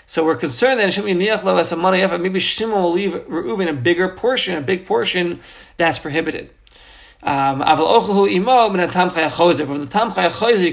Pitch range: 165-205 Hz